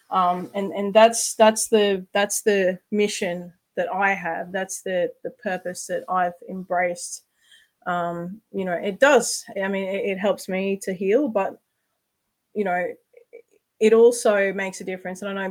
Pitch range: 185-215 Hz